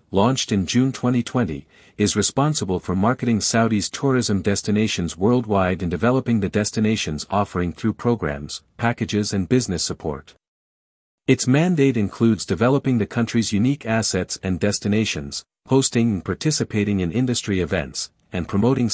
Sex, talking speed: male, 130 wpm